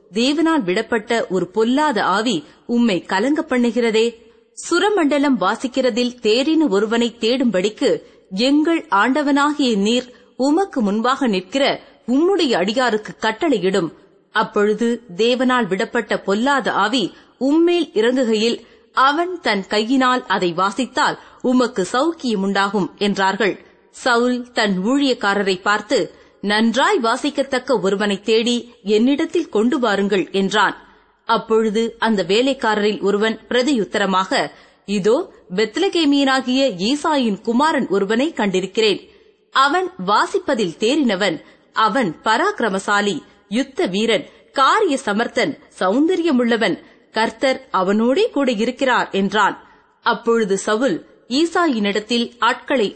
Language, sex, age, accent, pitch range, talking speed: Tamil, female, 30-49, native, 210-280 Hz, 90 wpm